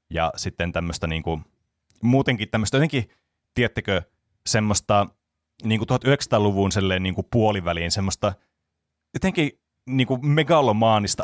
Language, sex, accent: Finnish, male, native